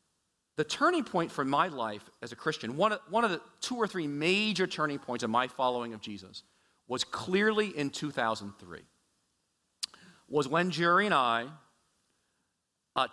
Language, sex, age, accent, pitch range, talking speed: English, male, 40-59, American, 115-165 Hz, 155 wpm